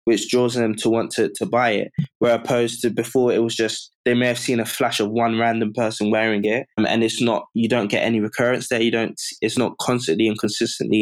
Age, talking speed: 20-39, 240 wpm